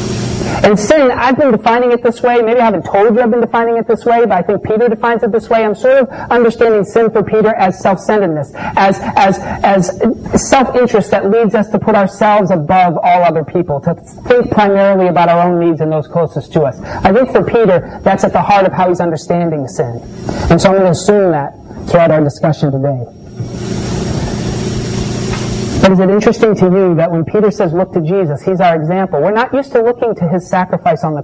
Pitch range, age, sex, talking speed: 175-235 Hz, 40-59, male, 215 wpm